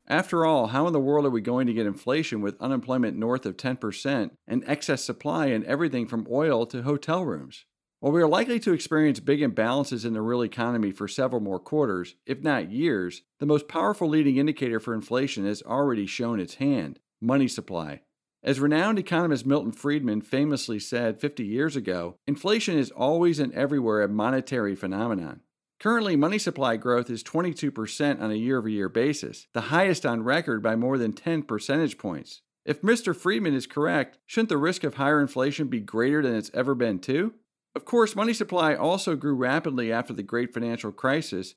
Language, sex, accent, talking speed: English, male, American, 185 wpm